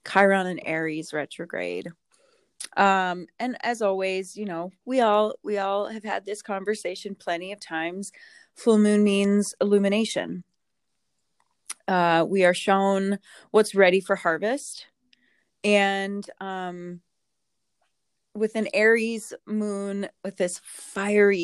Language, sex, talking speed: English, female, 120 wpm